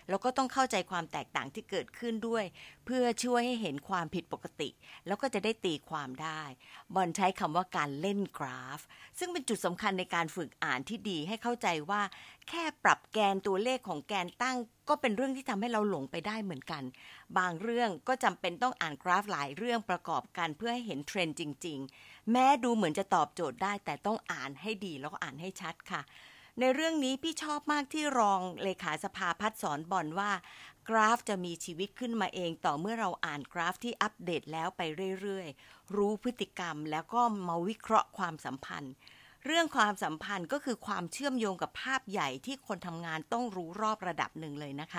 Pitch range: 170-235 Hz